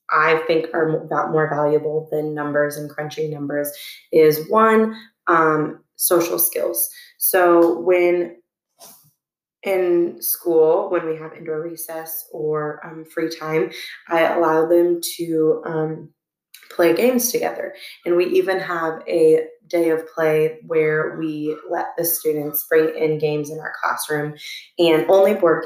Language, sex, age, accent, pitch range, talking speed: English, female, 20-39, American, 155-180 Hz, 140 wpm